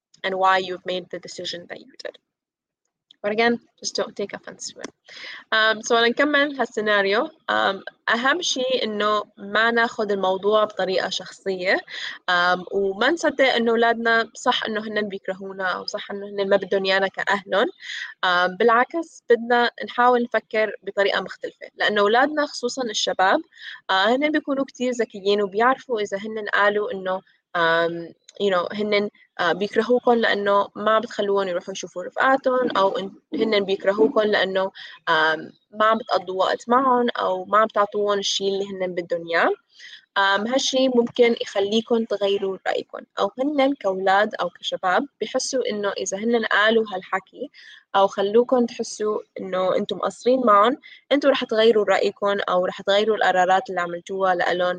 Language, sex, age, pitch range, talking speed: English, female, 20-39, 195-245 Hz, 125 wpm